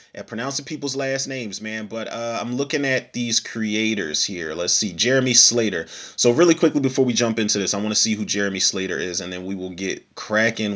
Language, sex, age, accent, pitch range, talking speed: English, male, 30-49, American, 110-140 Hz, 225 wpm